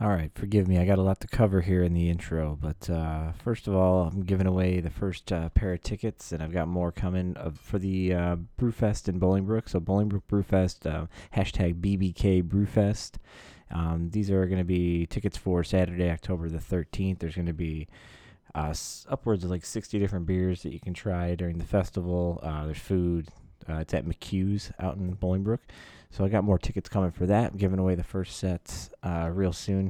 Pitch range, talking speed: 85-100 Hz, 200 wpm